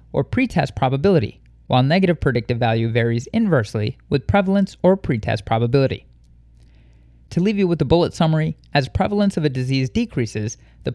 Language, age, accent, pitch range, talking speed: English, 30-49, American, 115-160 Hz, 155 wpm